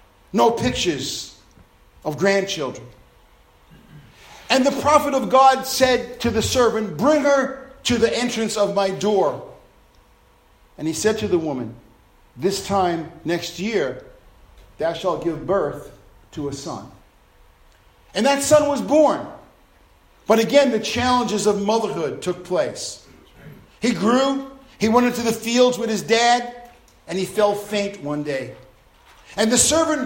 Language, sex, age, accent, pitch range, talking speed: English, male, 50-69, American, 170-260 Hz, 140 wpm